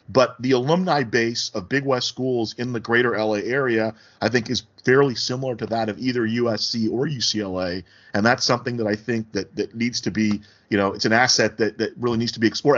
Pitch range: 115-140 Hz